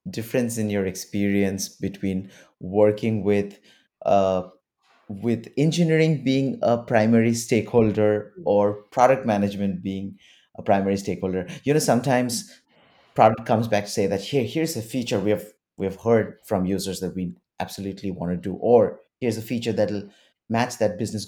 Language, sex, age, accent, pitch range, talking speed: English, male, 30-49, Indian, 100-125 Hz, 155 wpm